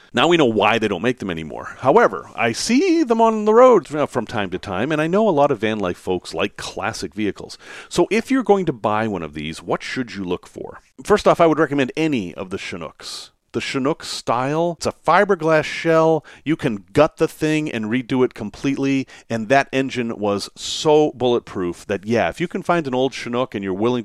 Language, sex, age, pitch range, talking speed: English, male, 40-59, 105-160 Hz, 220 wpm